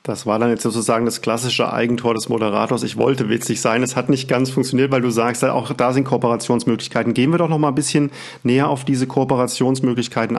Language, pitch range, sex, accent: German, 120-140 Hz, male, German